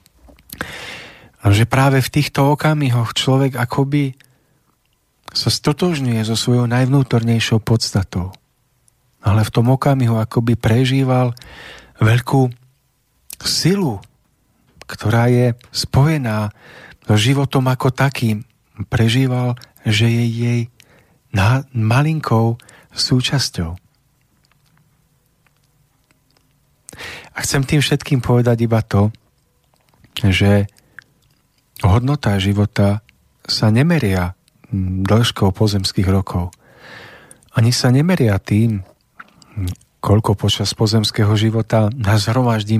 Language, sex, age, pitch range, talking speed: Slovak, male, 40-59, 105-130 Hz, 80 wpm